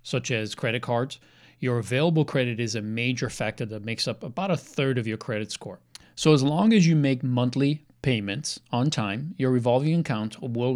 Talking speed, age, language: 195 wpm, 40-59, English